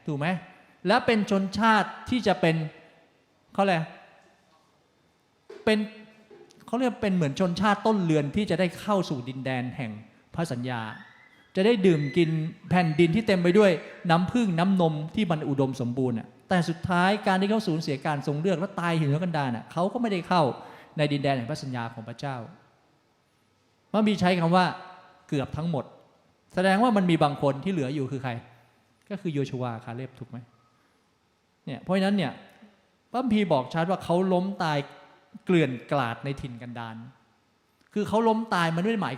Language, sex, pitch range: Thai, male, 140-195 Hz